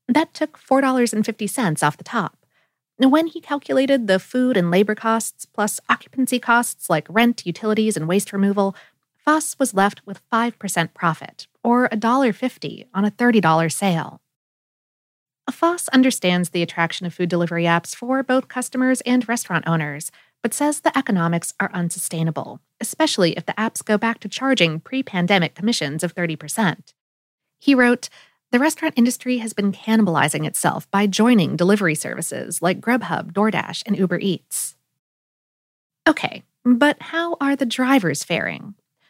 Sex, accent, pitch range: female, American, 175-255 Hz